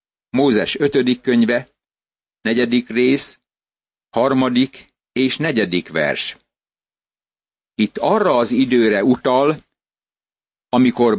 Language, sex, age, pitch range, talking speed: Hungarian, male, 60-79, 110-135 Hz, 80 wpm